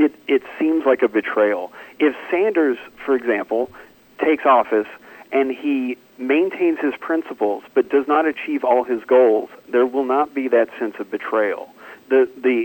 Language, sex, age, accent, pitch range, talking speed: English, male, 40-59, American, 115-150 Hz, 155 wpm